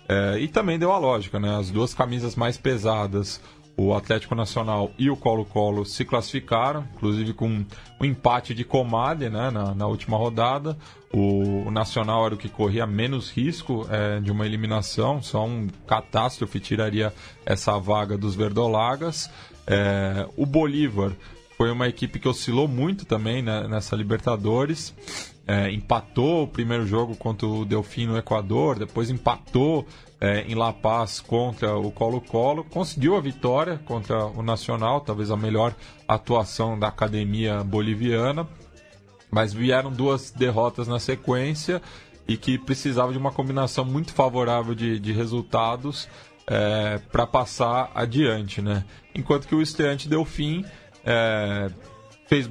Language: Portuguese